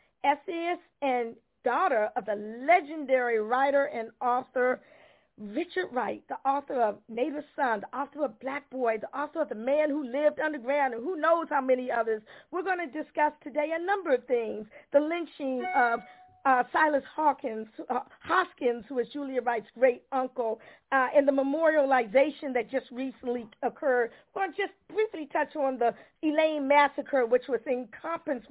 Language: English